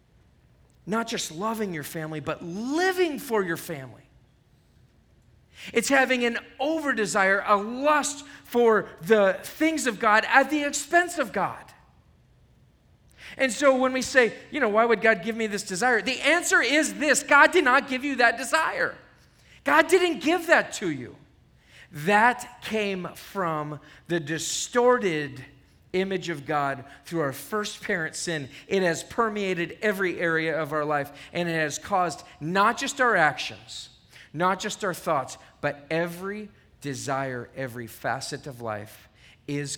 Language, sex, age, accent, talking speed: English, male, 40-59, American, 150 wpm